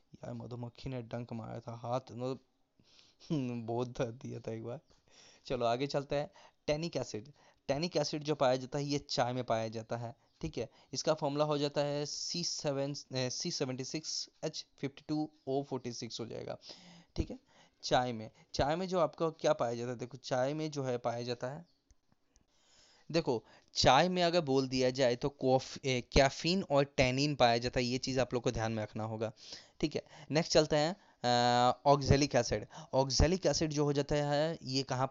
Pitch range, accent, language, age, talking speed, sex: 125-145 Hz, native, Hindi, 20-39, 160 wpm, male